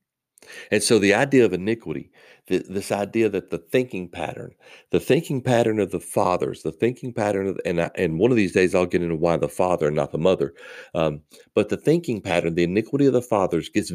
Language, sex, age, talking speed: English, male, 50-69, 220 wpm